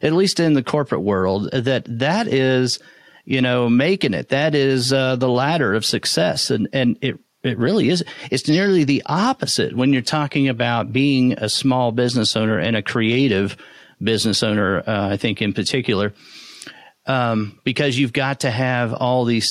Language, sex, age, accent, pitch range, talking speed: English, male, 40-59, American, 120-150 Hz, 175 wpm